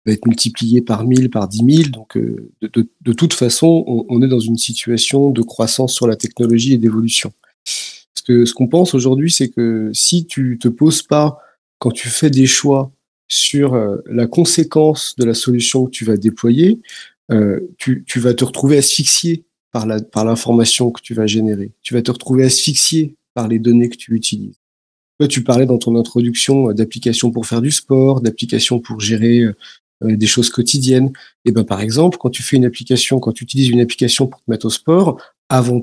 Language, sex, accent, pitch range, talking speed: French, male, French, 115-140 Hz, 205 wpm